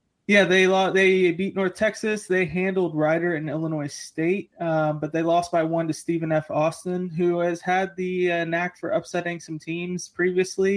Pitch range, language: 155-180 Hz, English